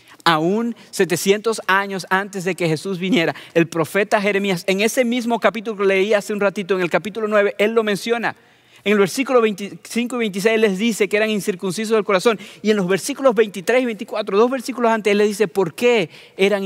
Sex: male